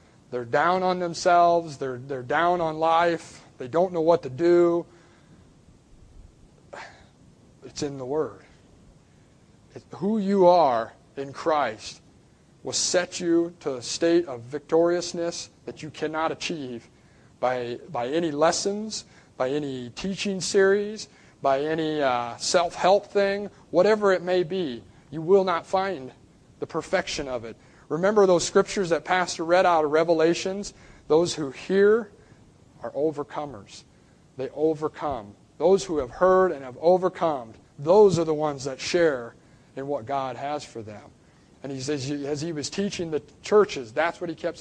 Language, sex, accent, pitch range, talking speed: English, male, American, 135-180 Hz, 150 wpm